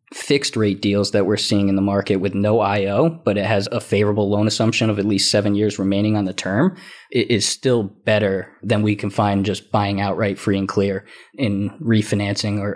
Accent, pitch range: American, 105-120 Hz